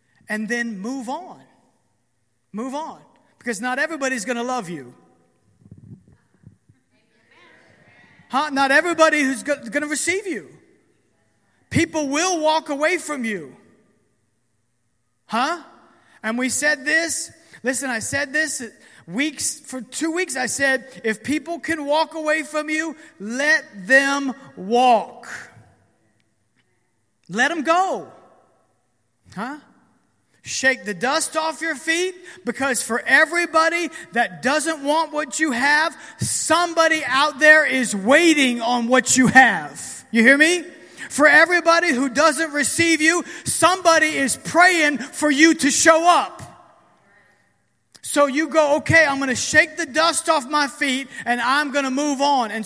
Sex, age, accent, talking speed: male, 40-59, American, 135 wpm